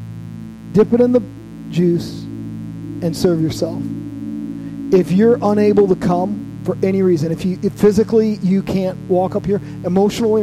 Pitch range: 160-205 Hz